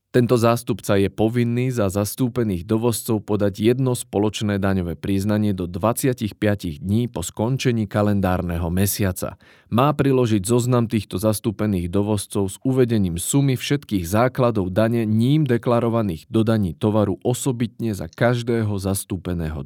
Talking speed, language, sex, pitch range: 120 wpm, Slovak, male, 95-120 Hz